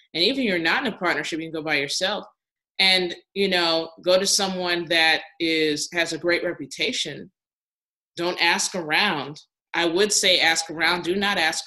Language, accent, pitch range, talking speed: English, American, 145-175 Hz, 185 wpm